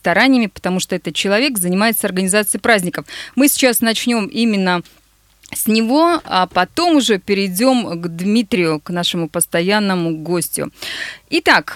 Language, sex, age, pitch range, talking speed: Russian, female, 20-39, 175-225 Hz, 125 wpm